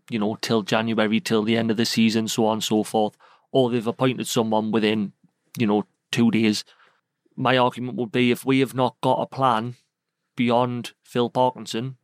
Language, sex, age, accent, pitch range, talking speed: English, male, 30-49, British, 115-135 Hz, 190 wpm